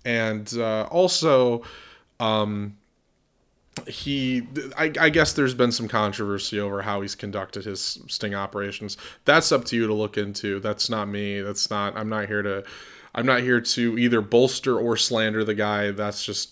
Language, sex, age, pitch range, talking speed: English, male, 20-39, 105-120 Hz, 170 wpm